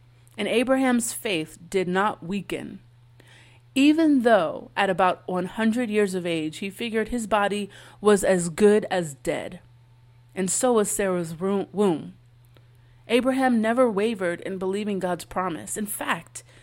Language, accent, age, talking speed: English, American, 30-49, 135 wpm